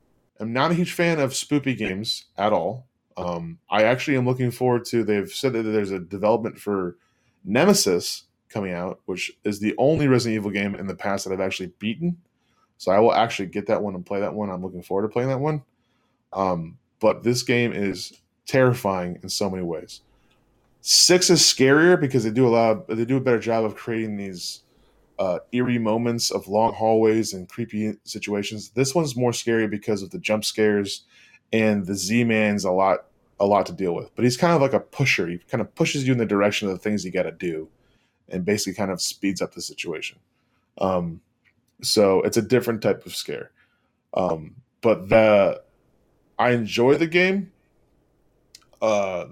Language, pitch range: English, 100-130 Hz